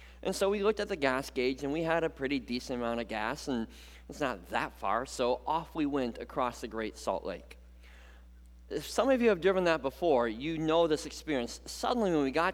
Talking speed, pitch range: 225 wpm, 100-160 Hz